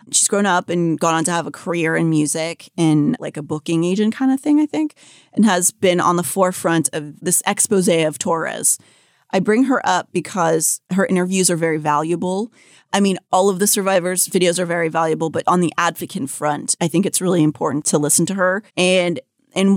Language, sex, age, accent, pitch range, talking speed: English, female, 30-49, American, 160-190 Hz, 210 wpm